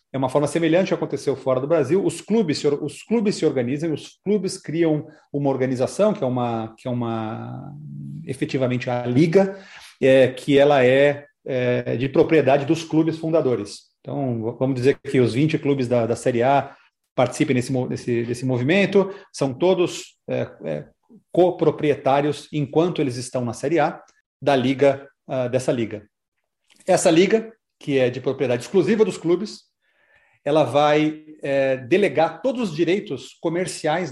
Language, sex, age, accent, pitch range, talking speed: Portuguese, male, 40-59, Brazilian, 130-170 Hz, 155 wpm